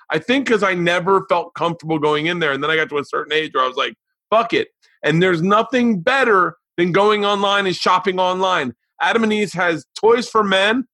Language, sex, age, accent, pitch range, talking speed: English, male, 30-49, American, 140-190 Hz, 225 wpm